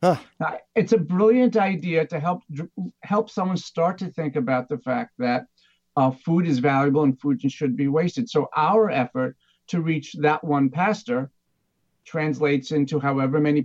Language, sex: English, male